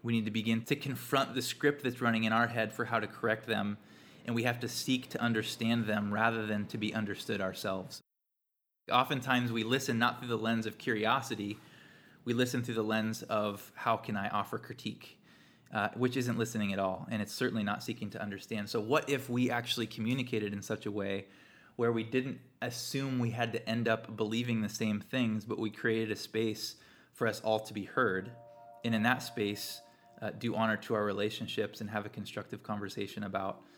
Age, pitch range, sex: 20-39, 105-120 Hz, male